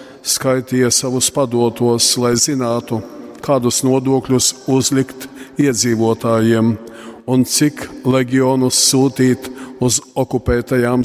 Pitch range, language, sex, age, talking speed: 120-140 Hz, English, male, 50-69, 80 wpm